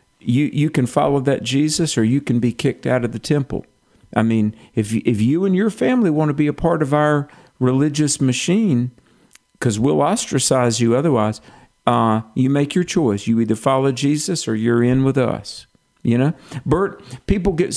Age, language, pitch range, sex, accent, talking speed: 50-69, English, 115-145 Hz, male, American, 195 wpm